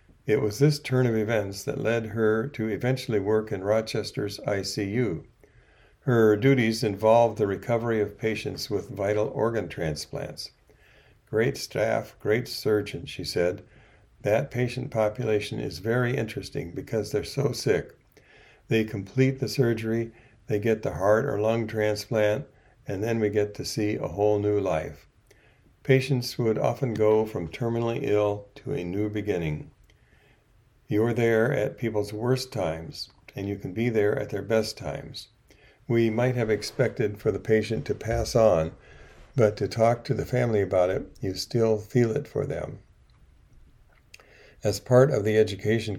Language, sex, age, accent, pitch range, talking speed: English, male, 60-79, American, 105-125 Hz, 155 wpm